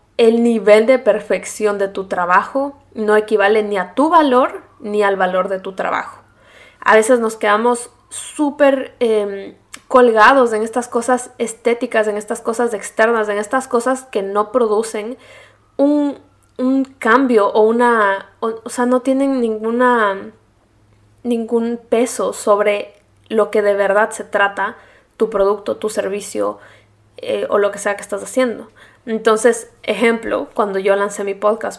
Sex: female